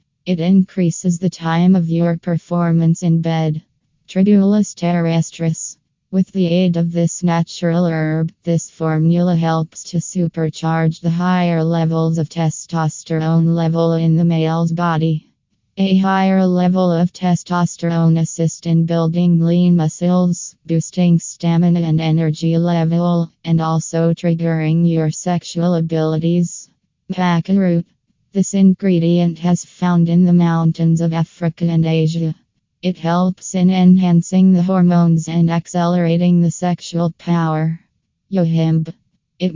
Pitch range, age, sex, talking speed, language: 165-180 Hz, 20-39, female, 120 wpm, English